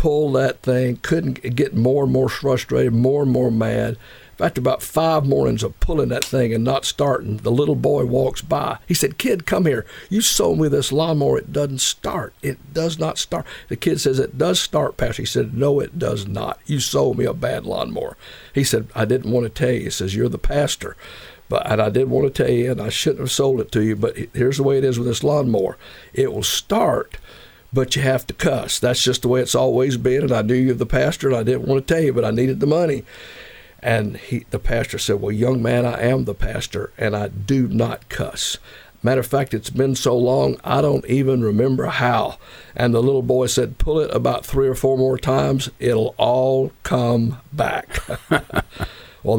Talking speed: 220 wpm